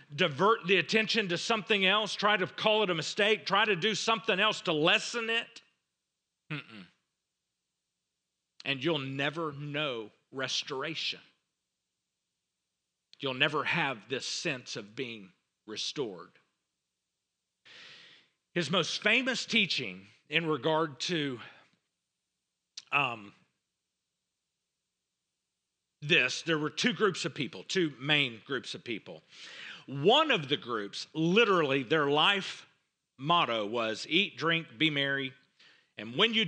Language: English